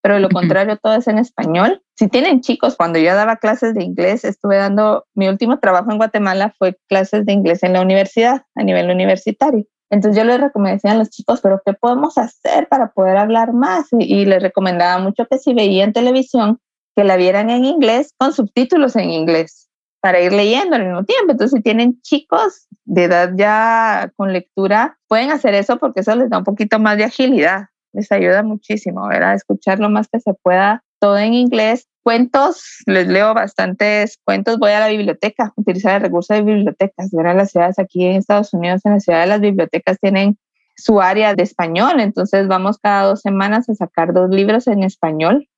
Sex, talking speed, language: female, 195 wpm, English